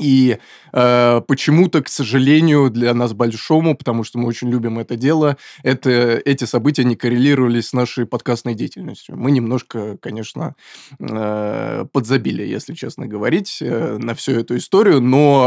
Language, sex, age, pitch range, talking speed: Russian, male, 20-39, 120-140 Hz, 145 wpm